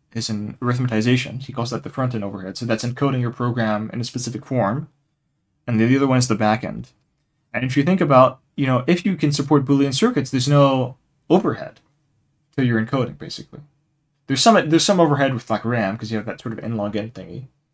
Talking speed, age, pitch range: 220 wpm, 20-39, 115-145 Hz